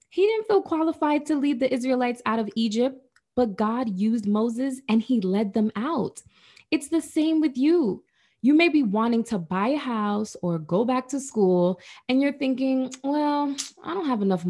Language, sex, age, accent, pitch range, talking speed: English, female, 20-39, American, 185-285 Hz, 190 wpm